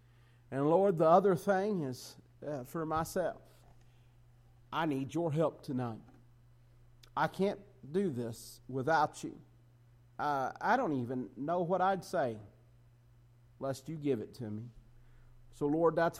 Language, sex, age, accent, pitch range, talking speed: English, male, 50-69, American, 110-150 Hz, 135 wpm